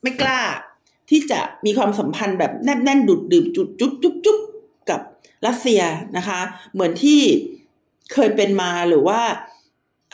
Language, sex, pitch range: Thai, female, 200-280 Hz